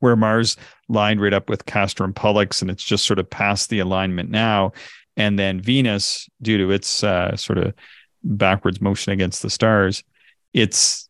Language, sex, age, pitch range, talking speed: English, male, 40-59, 100-120 Hz, 180 wpm